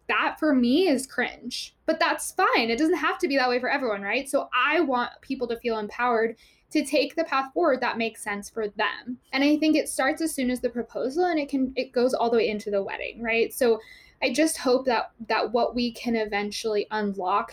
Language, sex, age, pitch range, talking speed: English, female, 10-29, 225-285 Hz, 235 wpm